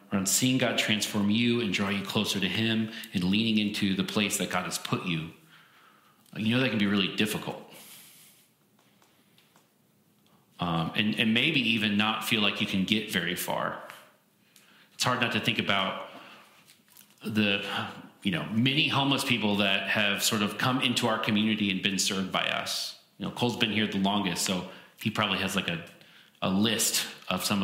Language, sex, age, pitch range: English, male, 30-49, 105-135 Hz